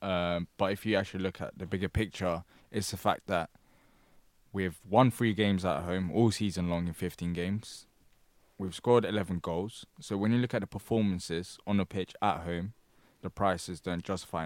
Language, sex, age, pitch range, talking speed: English, male, 20-39, 90-115 Hz, 190 wpm